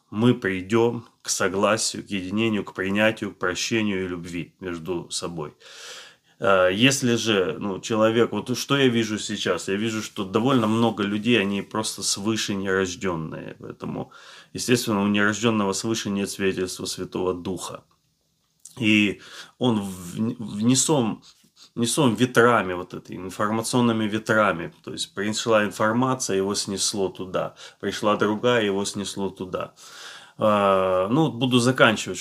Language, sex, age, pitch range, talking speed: Russian, male, 20-39, 95-115 Hz, 125 wpm